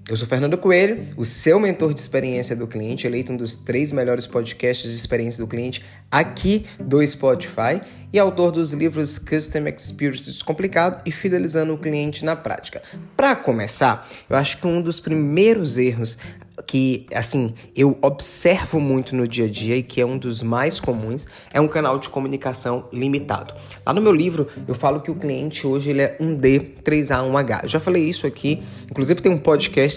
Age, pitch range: 20-39, 120-165 Hz